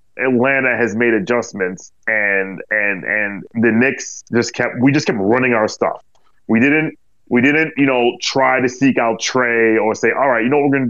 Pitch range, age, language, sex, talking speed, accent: 115-160 Hz, 20-39, English, male, 205 wpm, American